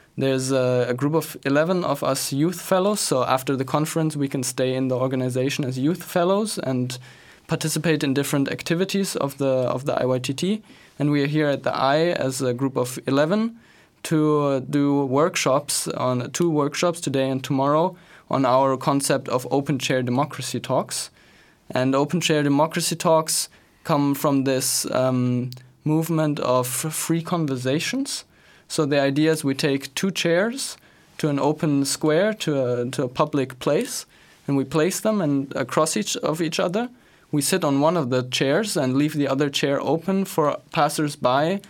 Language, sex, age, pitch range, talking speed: English, male, 20-39, 135-160 Hz, 170 wpm